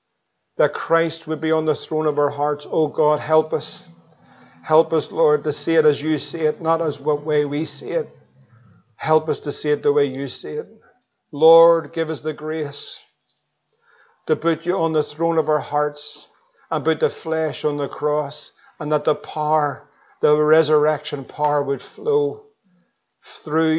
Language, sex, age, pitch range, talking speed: English, male, 50-69, 145-160 Hz, 180 wpm